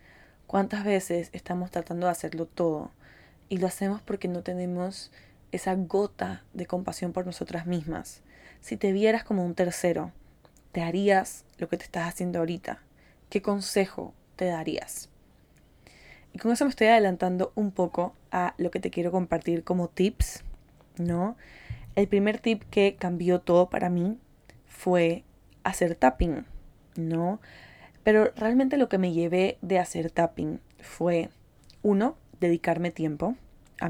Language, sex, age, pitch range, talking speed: Spanish, female, 10-29, 170-200 Hz, 145 wpm